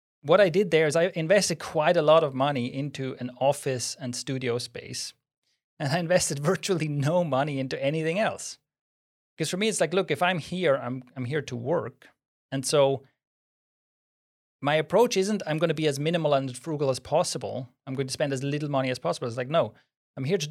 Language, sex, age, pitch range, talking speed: English, male, 30-49, 125-160 Hz, 205 wpm